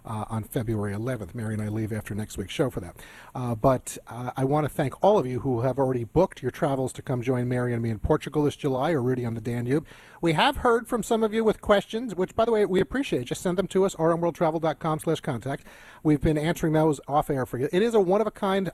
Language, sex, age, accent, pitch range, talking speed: English, male, 40-59, American, 135-185 Hz, 255 wpm